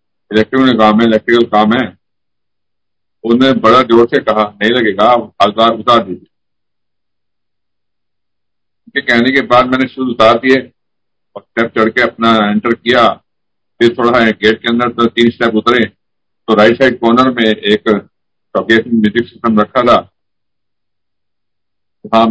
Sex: male